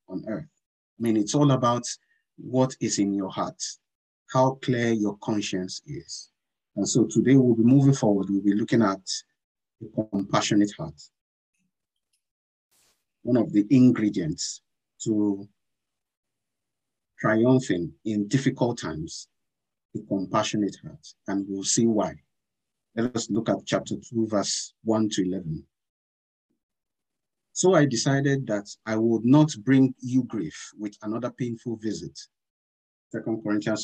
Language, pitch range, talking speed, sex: English, 105-130 Hz, 130 wpm, male